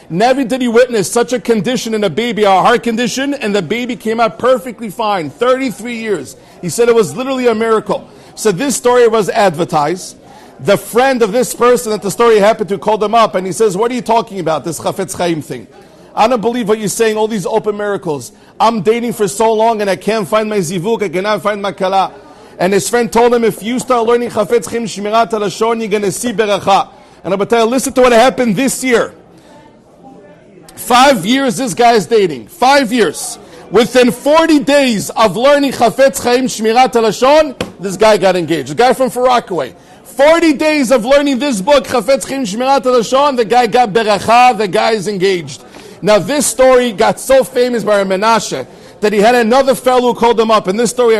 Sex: male